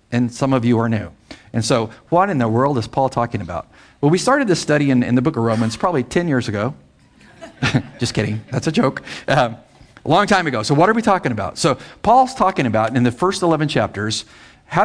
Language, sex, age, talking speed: English, male, 50-69, 230 wpm